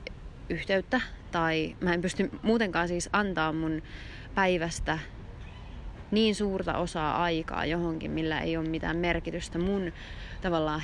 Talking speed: 120 wpm